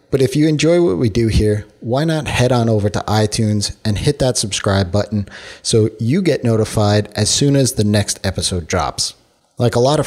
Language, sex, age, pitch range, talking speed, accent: English, male, 30-49, 100-125 Hz, 210 wpm, American